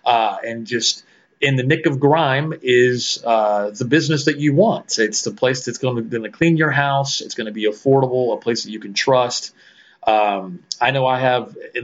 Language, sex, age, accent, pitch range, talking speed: English, male, 30-49, American, 115-140 Hz, 215 wpm